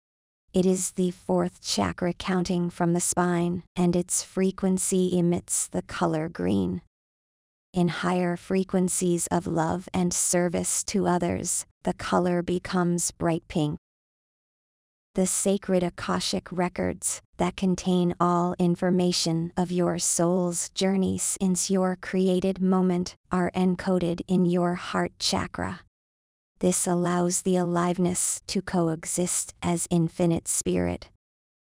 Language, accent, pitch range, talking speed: English, American, 175-185 Hz, 115 wpm